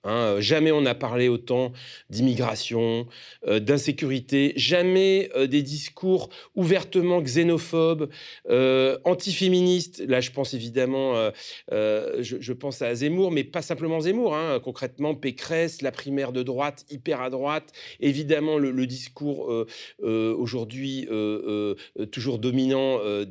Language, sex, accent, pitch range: French, male, French, 130-185 Hz